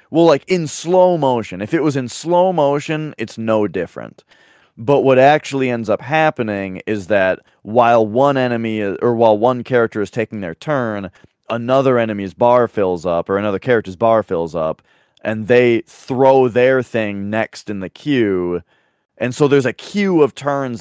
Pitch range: 100-130 Hz